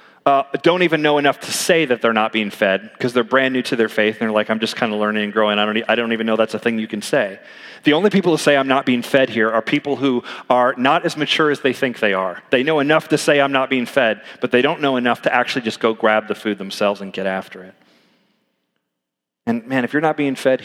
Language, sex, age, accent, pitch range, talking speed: English, male, 40-59, American, 105-135 Hz, 280 wpm